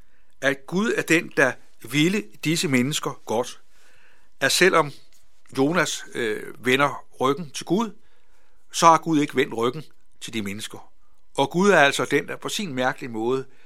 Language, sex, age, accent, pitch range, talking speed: Danish, male, 60-79, native, 125-170 Hz, 155 wpm